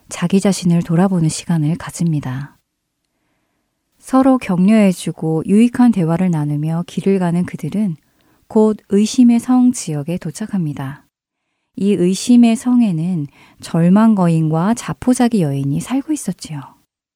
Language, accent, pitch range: Korean, native, 165-230 Hz